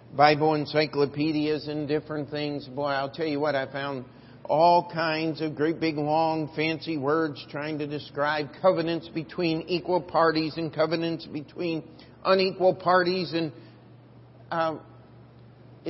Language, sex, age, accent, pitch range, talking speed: English, male, 50-69, American, 130-175 Hz, 130 wpm